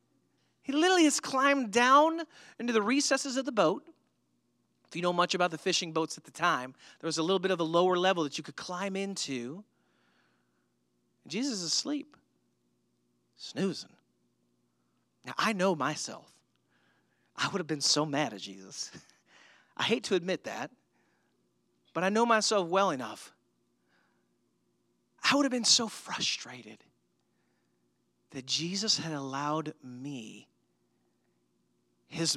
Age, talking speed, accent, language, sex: 30-49, 140 wpm, American, English, male